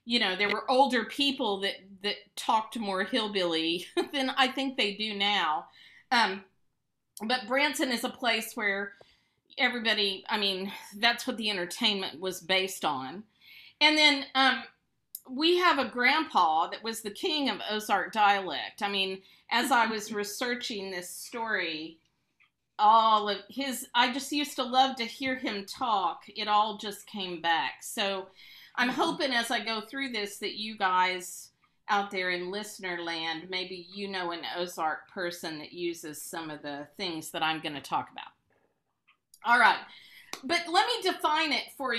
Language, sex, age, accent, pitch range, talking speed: English, female, 40-59, American, 185-245 Hz, 165 wpm